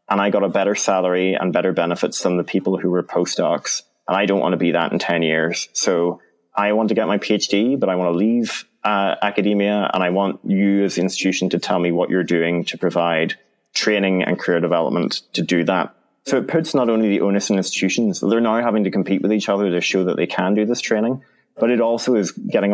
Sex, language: male, English